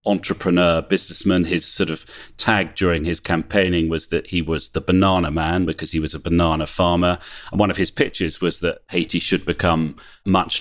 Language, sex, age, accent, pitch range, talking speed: English, male, 40-59, British, 80-95 Hz, 185 wpm